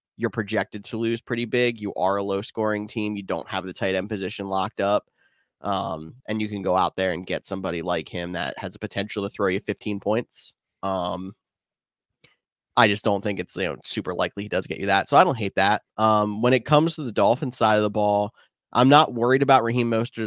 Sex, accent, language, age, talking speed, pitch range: male, American, English, 20-39, 235 wpm, 95-115 Hz